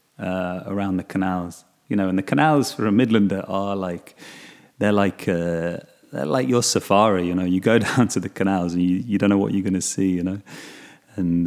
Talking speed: 220 wpm